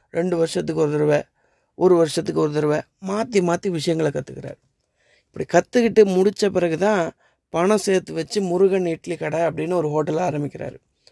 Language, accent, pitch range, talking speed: Tamil, native, 155-190 Hz, 140 wpm